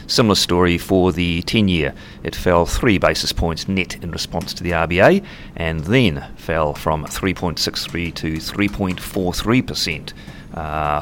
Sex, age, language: male, 40-59, English